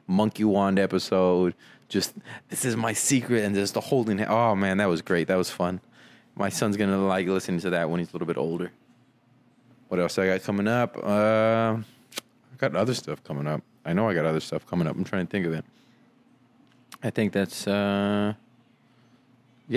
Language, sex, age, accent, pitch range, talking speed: English, male, 20-39, American, 95-120 Hz, 195 wpm